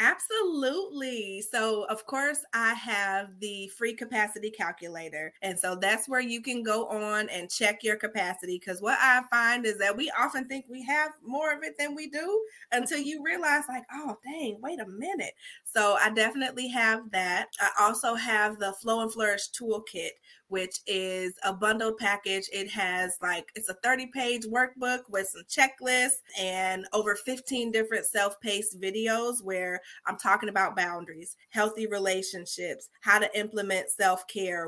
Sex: female